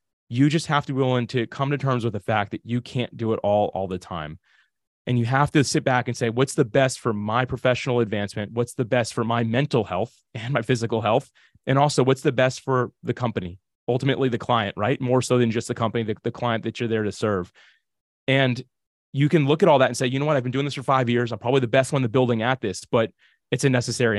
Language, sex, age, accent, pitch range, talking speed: English, male, 30-49, American, 115-140 Hz, 265 wpm